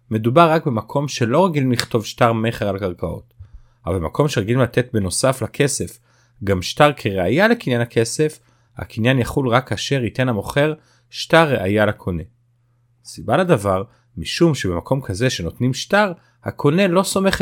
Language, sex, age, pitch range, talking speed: Hebrew, male, 30-49, 105-140 Hz, 140 wpm